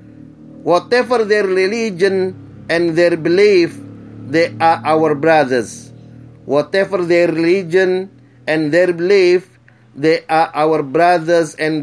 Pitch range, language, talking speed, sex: 150-180 Hz, Indonesian, 105 wpm, male